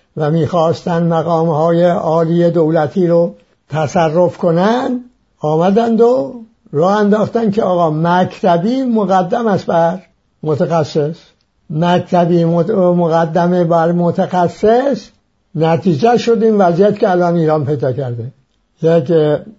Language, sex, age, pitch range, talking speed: English, male, 60-79, 150-190 Hz, 105 wpm